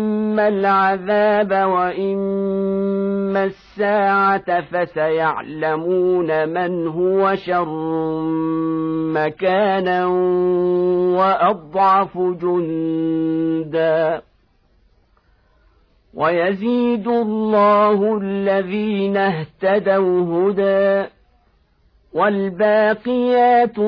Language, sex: Arabic, male